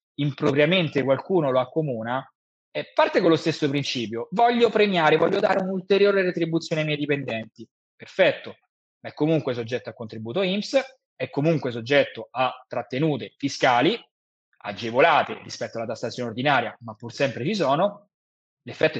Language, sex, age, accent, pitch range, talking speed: Italian, male, 20-39, native, 125-175 Hz, 140 wpm